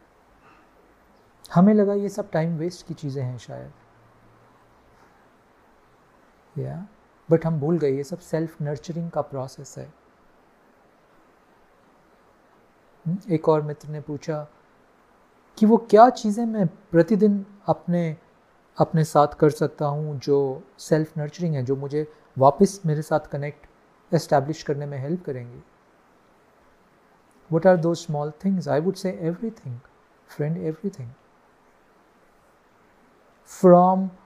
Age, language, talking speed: 40-59, Hindi, 120 wpm